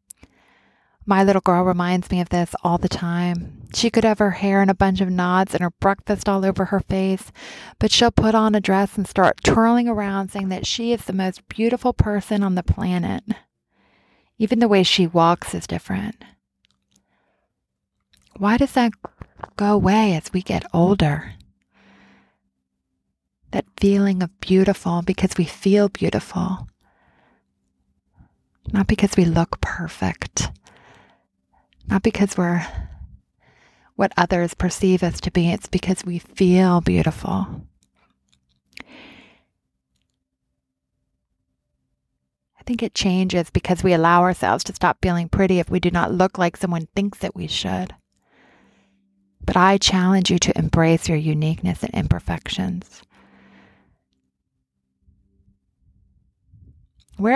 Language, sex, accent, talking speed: English, female, American, 130 wpm